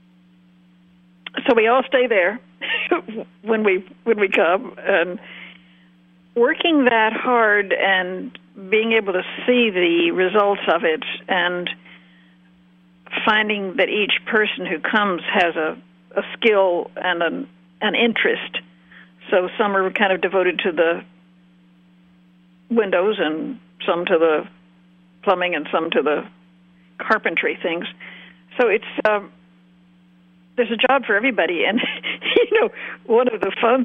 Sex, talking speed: female, 130 wpm